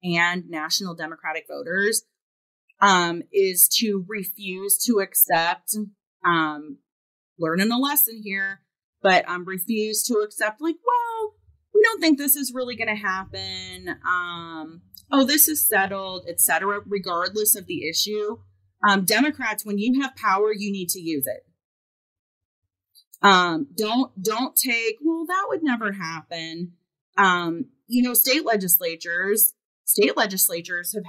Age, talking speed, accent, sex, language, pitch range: 30-49, 135 wpm, American, female, English, 170-215 Hz